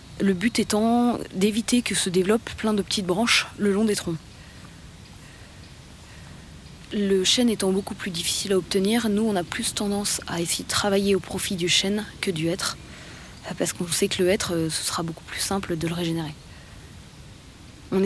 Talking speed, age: 180 wpm, 20-39